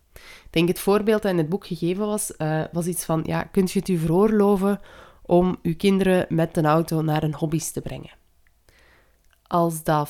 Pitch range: 155-200 Hz